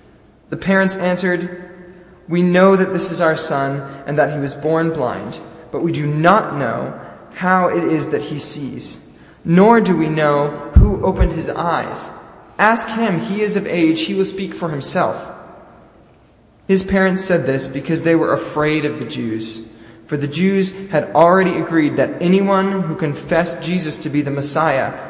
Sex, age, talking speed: male, 20-39, 170 wpm